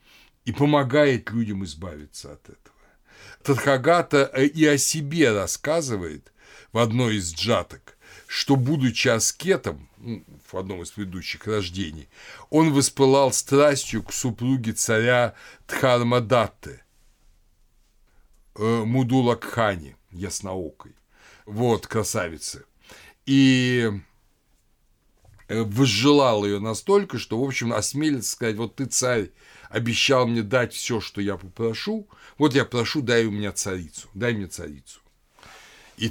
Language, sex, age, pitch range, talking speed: Russian, male, 60-79, 100-130 Hz, 105 wpm